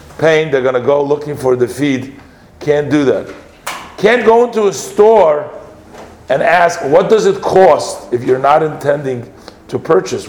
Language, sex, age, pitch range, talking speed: English, male, 50-69, 135-170 Hz, 170 wpm